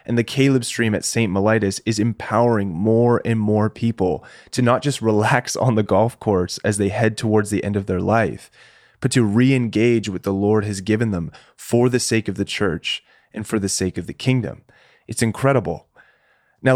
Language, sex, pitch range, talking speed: English, male, 100-120 Hz, 205 wpm